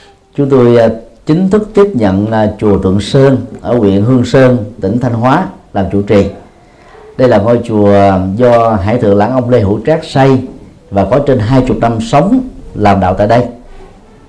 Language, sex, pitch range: Vietnamese, male, 100-135 Hz